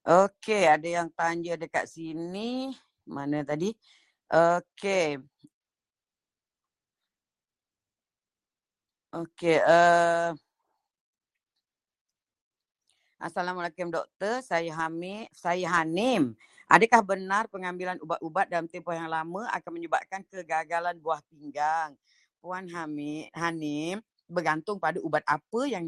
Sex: female